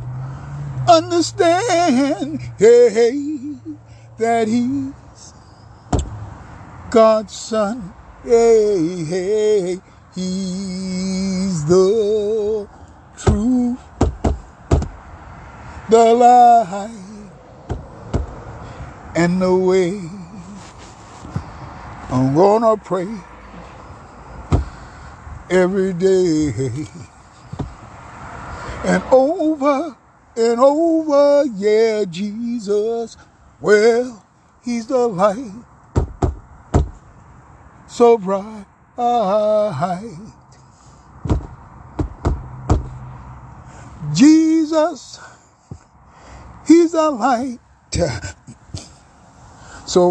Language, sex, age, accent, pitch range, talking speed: English, male, 60-79, American, 175-260 Hz, 50 wpm